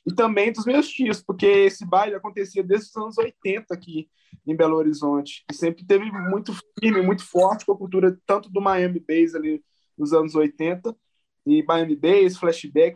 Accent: Brazilian